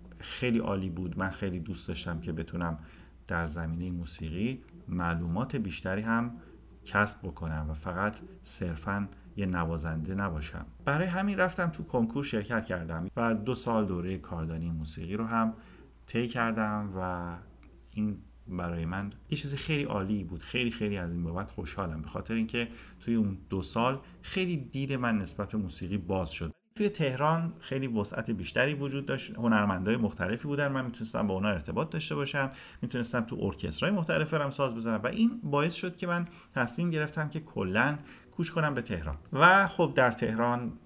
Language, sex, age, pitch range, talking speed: Persian, male, 50-69, 90-135 Hz, 160 wpm